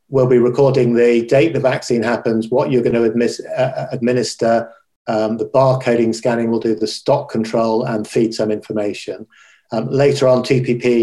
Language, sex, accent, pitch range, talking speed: English, male, British, 110-130 Hz, 170 wpm